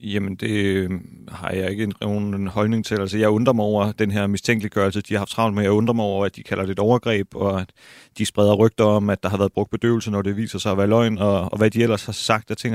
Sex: male